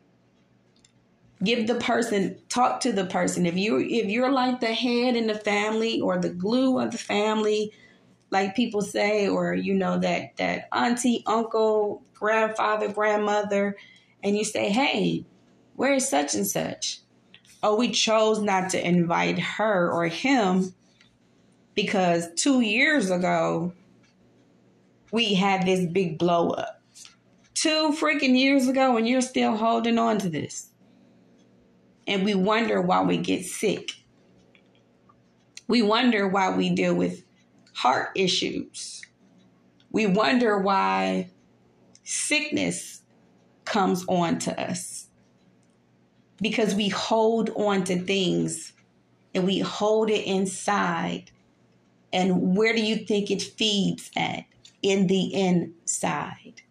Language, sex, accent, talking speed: English, female, American, 130 wpm